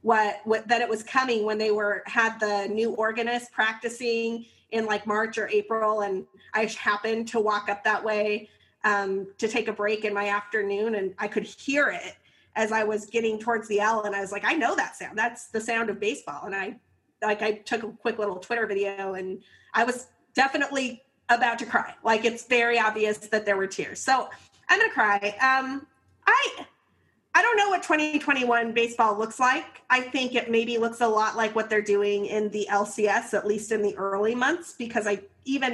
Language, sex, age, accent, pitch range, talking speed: English, female, 30-49, American, 210-240 Hz, 205 wpm